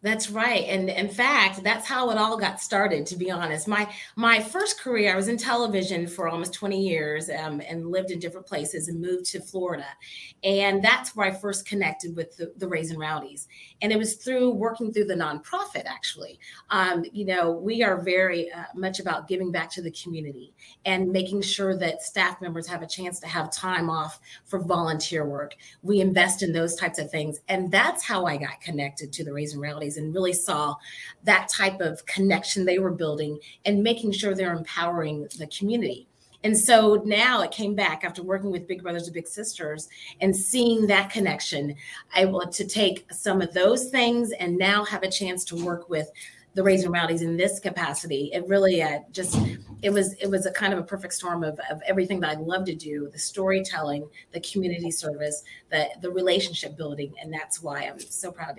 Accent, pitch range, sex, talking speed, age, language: American, 165-200 Hz, female, 200 wpm, 30-49, English